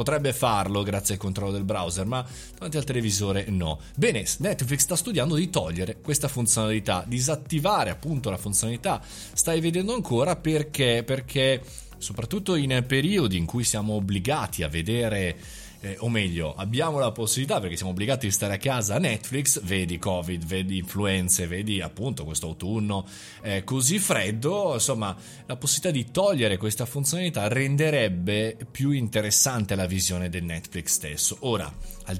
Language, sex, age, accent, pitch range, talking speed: Italian, male, 20-39, native, 95-130 Hz, 150 wpm